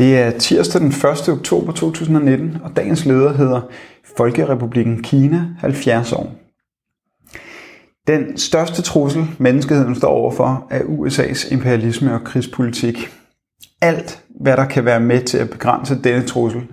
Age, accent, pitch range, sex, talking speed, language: 30-49, native, 120-145 Hz, male, 135 wpm, Danish